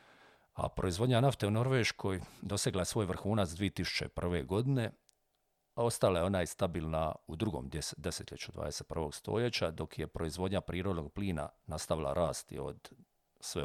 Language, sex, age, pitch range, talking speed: Croatian, male, 50-69, 80-100 Hz, 135 wpm